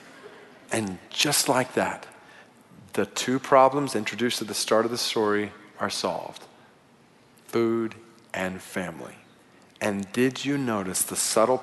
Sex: male